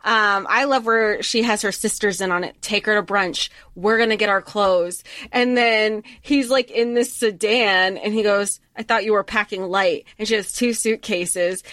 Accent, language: American, English